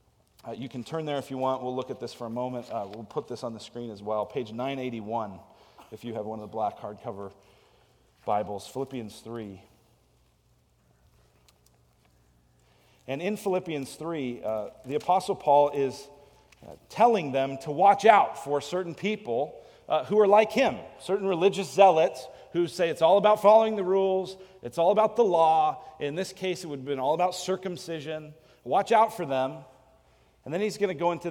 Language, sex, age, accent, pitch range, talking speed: English, male, 40-59, American, 120-185 Hz, 185 wpm